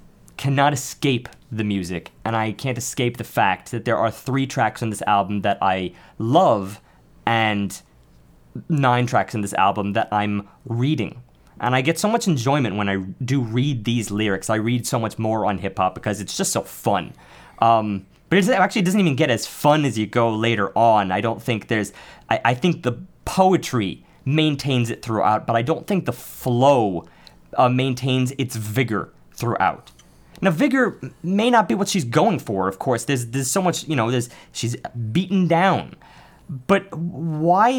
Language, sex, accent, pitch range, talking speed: English, male, American, 115-175 Hz, 185 wpm